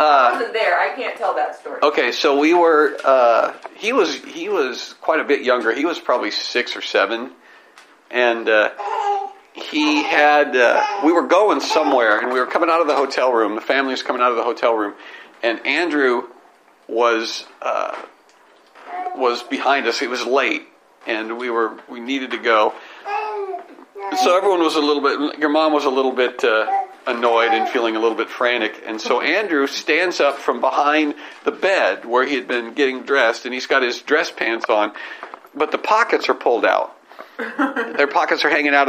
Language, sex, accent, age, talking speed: English, male, American, 50-69, 195 wpm